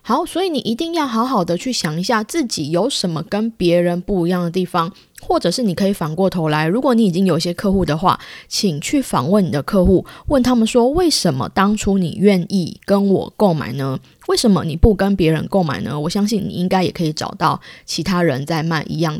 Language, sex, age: Chinese, female, 20-39